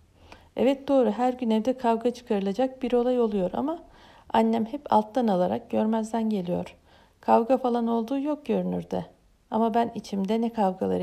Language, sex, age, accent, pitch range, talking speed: Turkish, female, 50-69, native, 175-245 Hz, 145 wpm